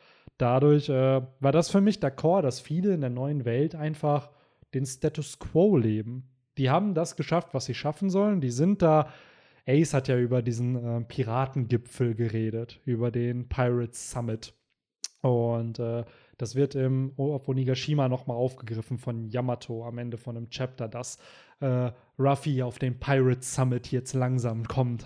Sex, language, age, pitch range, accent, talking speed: male, German, 20-39, 120-145 Hz, German, 165 wpm